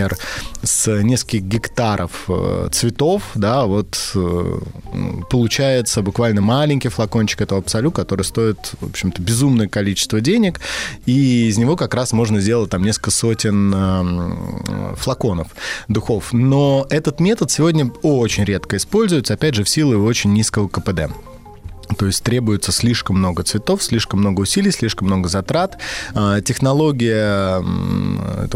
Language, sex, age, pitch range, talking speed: Russian, male, 20-39, 100-130 Hz, 125 wpm